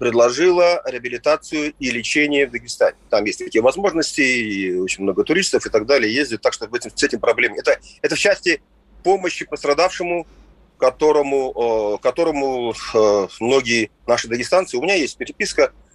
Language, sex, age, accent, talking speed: Russian, male, 30-49, native, 160 wpm